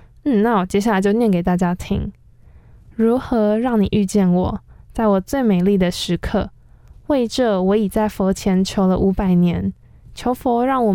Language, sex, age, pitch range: Chinese, female, 10-29, 190-235 Hz